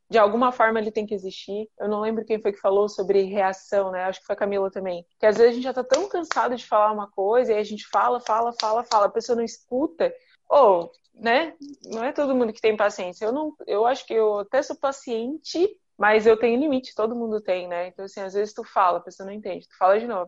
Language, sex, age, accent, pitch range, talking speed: Portuguese, female, 20-39, Brazilian, 200-240 Hz, 265 wpm